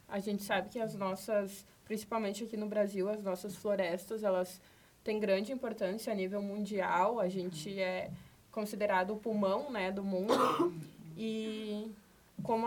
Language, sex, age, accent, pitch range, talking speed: Portuguese, female, 20-39, Brazilian, 195-225 Hz, 145 wpm